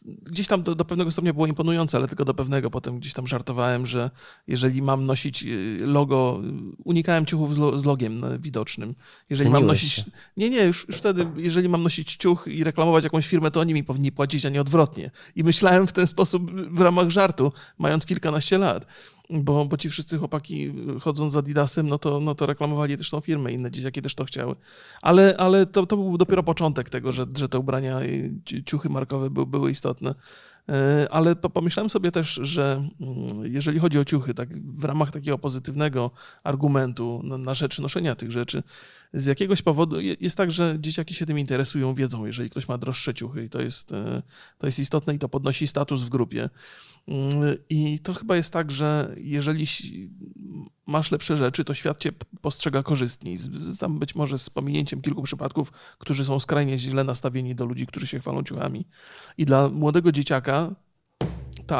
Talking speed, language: 180 wpm, Polish